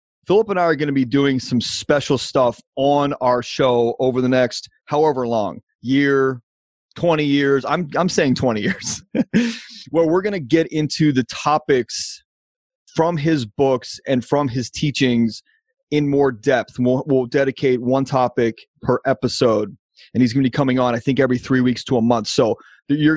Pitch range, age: 125-155 Hz, 30-49